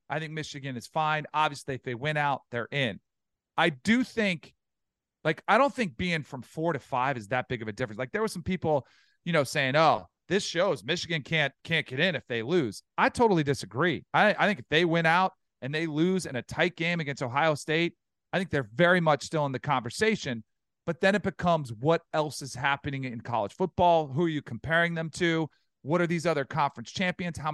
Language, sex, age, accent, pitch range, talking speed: English, male, 40-59, American, 140-180 Hz, 220 wpm